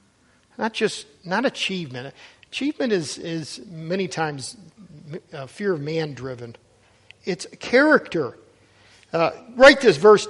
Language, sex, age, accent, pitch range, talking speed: English, male, 50-69, American, 175-235 Hz, 110 wpm